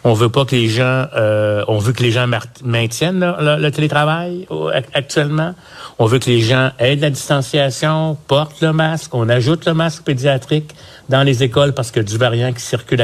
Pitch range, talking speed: 115-155 Hz, 205 wpm